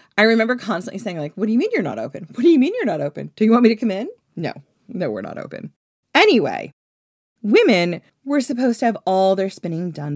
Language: English